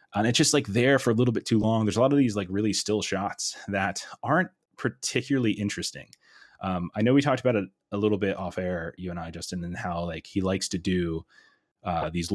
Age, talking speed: 20-39, 240 wpm